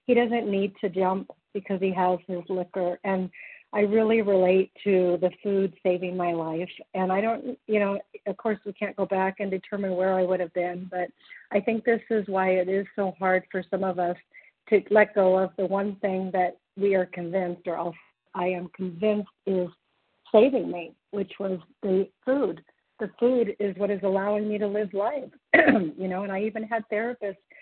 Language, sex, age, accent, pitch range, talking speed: English, female, 50-69, American, 185-220 Hz, 200 wpm